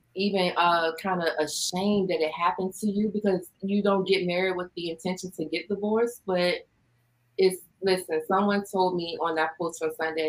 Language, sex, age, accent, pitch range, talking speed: English, female, 30-49, American, 155-185 Hz, 185 wpm